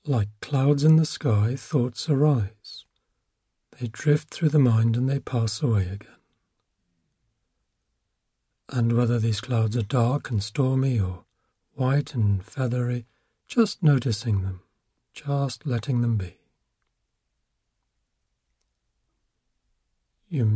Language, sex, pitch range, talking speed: English, male, 110-135 Hz, 110 wpm